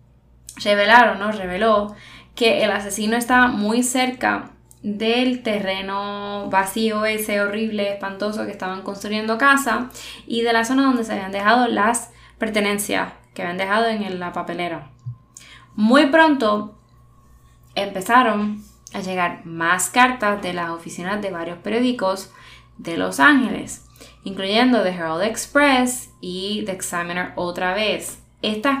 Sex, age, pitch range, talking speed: female, 10-29, 185-230 Hz, 125 wpm